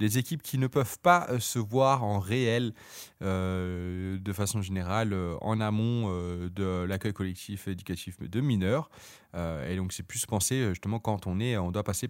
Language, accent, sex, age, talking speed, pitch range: French, French, male, 20-39, 185 wpm, 95-120 Hz